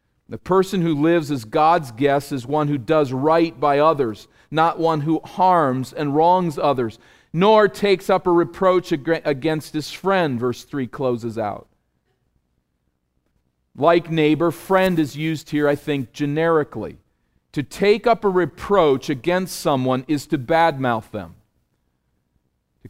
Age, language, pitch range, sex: 40-59, English, 120-165 Hz, male